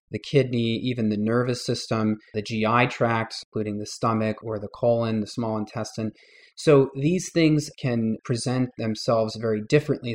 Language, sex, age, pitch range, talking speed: English, male, 30-49, 110-135 Hz, 155 wpm